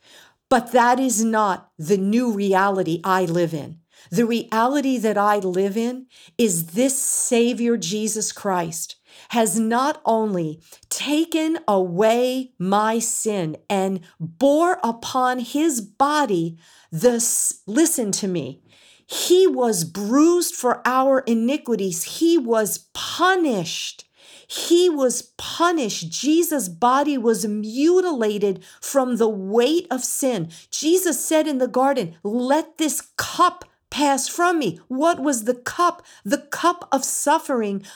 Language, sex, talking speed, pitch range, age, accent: English, female, 120 wpm, 205-300 Hz, 50-69, American